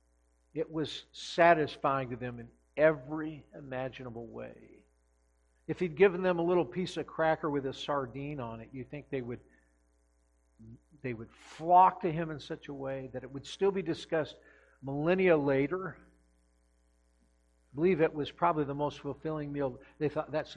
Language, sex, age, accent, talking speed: English, male, 50-69, American, 160 wpm